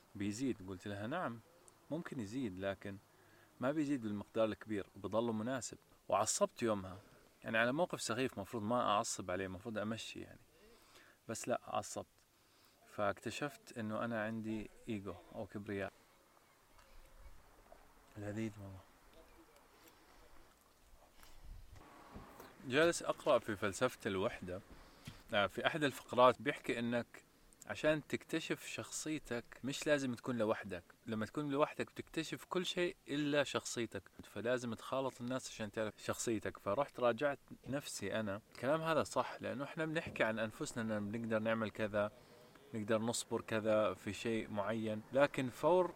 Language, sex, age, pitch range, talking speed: Arabic, male, 20-39, 105-135 Hz, 120 wpm